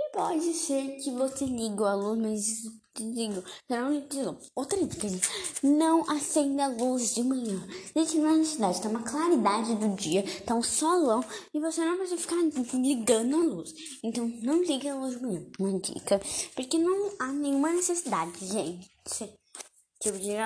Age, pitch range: 10-29, 205-300 Hz